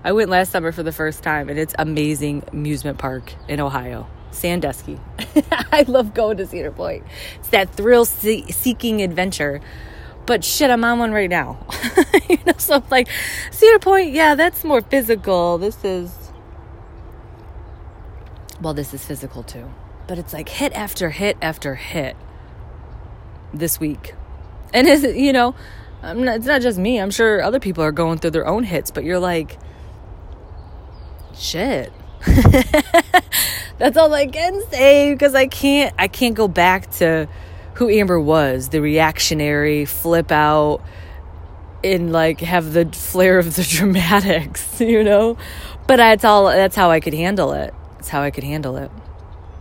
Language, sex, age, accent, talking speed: English, female, 20-39, American, 160 wpm